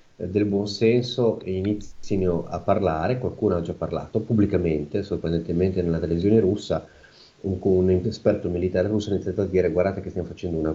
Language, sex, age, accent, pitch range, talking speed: Italian, male, 30-49, native, 85-105 Hz, 165 wpm